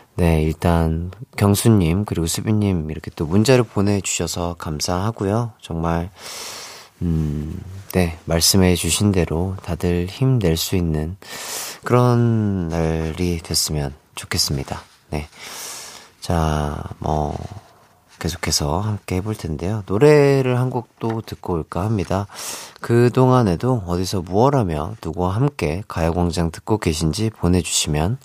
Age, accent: 30-49, native